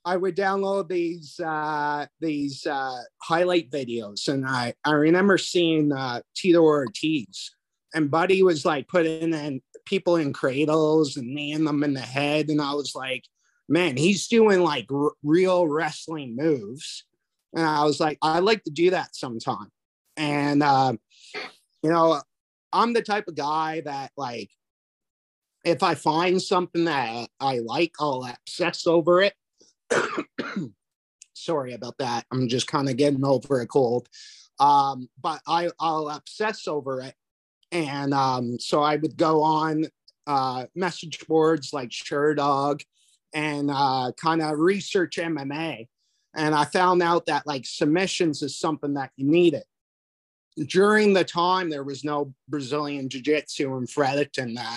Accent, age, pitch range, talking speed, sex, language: American, 30-49, 140-170 Hz, 150 wpm, male, English